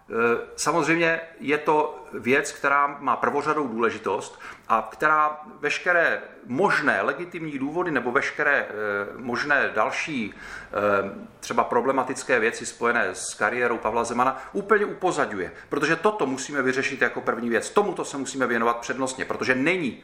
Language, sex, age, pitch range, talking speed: Czech, male, 40-59, 110-155 Hz, 125 wpm